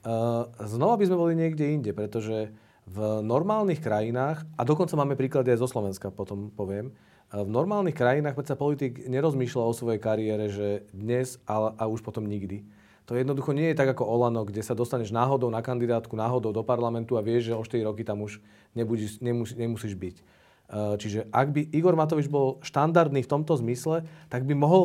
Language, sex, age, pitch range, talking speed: Slovak, male, 40-59, 115-145 Hz, 180 wpm